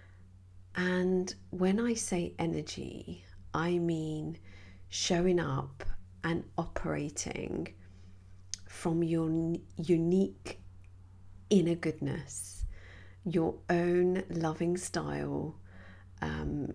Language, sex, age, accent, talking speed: English, female, 40-59, British, 75 wpm